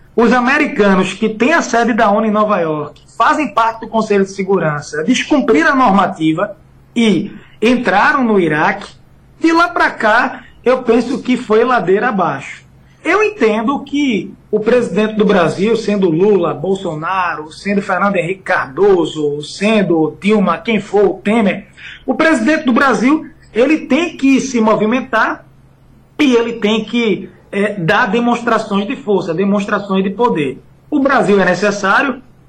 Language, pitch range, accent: Portuguese, 190-250 Hz, Brazilian